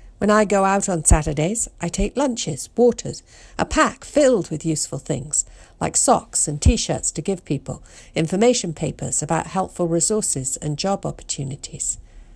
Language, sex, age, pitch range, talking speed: English, female, 50-69, 140-215 Hz, 150 wpm